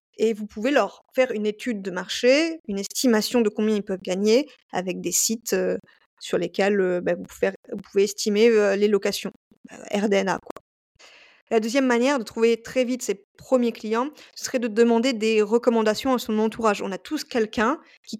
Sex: female